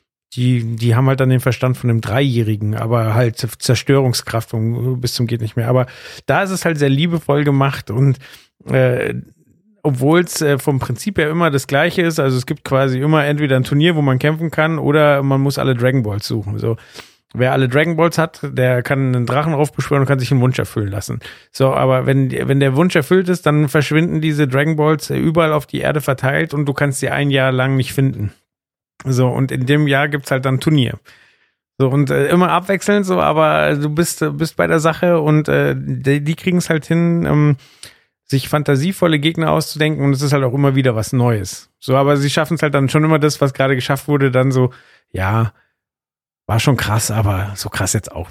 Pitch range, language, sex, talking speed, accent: 120-150 Hz, German, male, 215 wpm, German